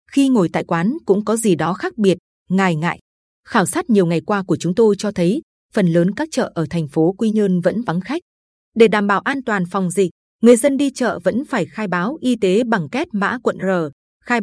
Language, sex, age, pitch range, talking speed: Vietnamese, female, 20-39, 185-230 Hz, 235 wpm